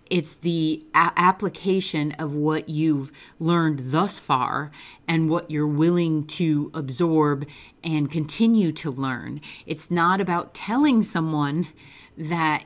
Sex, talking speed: female, 125 wpm